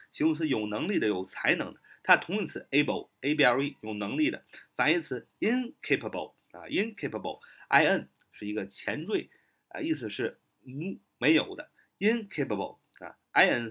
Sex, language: male, Chinese